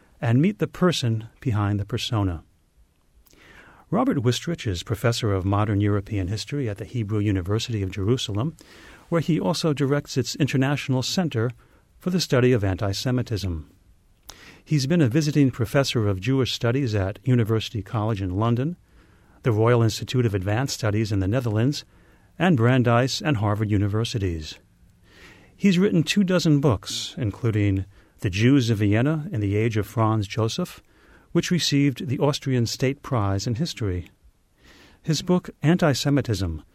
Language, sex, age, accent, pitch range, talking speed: English, male, 40-59, American, 105-135 Hz, 140 wpm